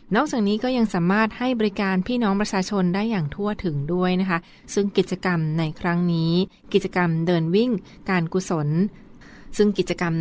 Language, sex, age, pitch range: Thai, female, 20-39, 170-200 Hz